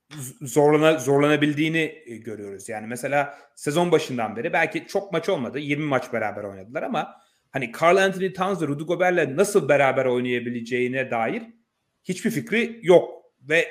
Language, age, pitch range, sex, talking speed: Turkish, 30-49, 130-180 Hz, male, 125 wpm